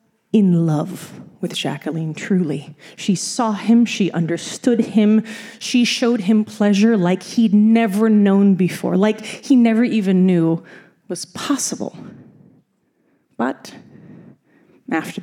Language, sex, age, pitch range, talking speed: English, female, 30-49, 180-225 Hz, 115 wpm